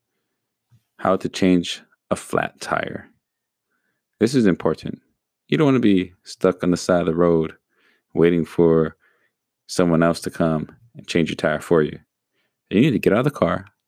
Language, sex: English, male